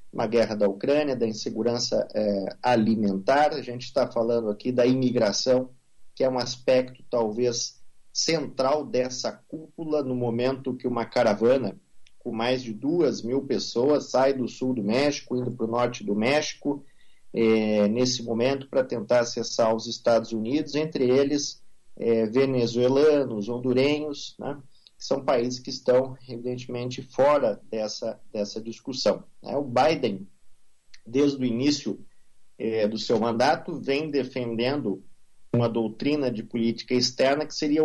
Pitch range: 115-140 Hz